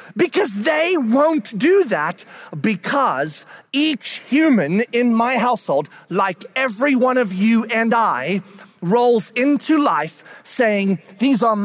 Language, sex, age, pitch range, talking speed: English, male, 40-59, 190-255 Hz, 125 wpm